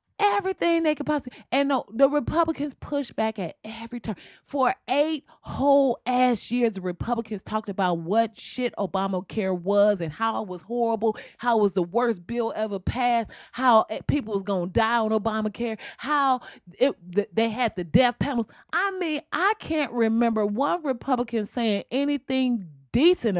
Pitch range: 180-260 Hz